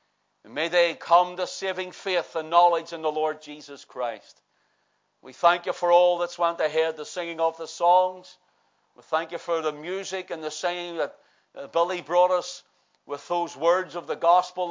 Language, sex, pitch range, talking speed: English, male, 150-180 Hz, 185 wpm